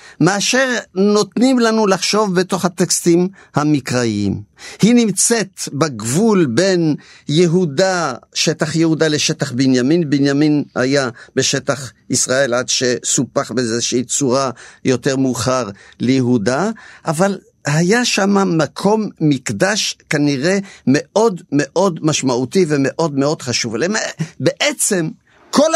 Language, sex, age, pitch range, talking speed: Hebrew, male, 50-69, 140-205 Hz, 100 wpm